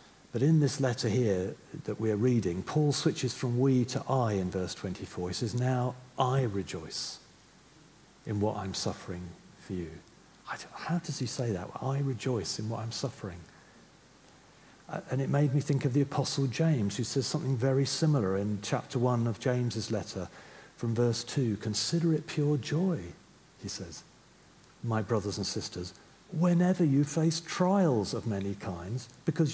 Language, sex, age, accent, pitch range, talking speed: English, male, 50-69, British, 110-155 Hz, 165 wpm